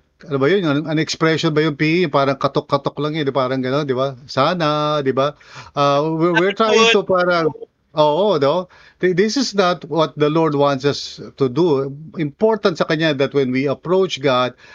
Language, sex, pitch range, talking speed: English, male, 135-175 Hz, 165 wpm